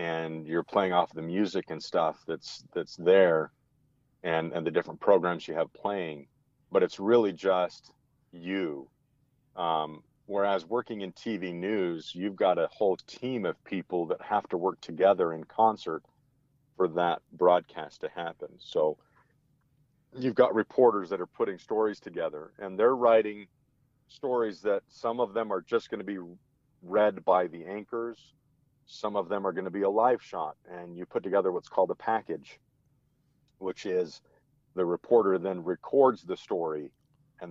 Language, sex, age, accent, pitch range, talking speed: English, male, 40-59, American, 85-135 Hz, 165 wpm